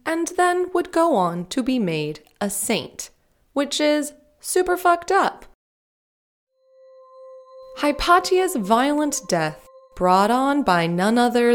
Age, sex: 20-39, female